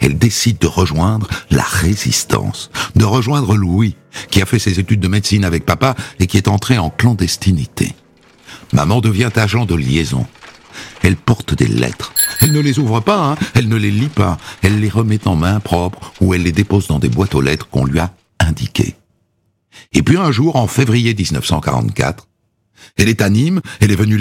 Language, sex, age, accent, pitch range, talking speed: French, male, 60-79, French, 100-130 Hz, 190 wpm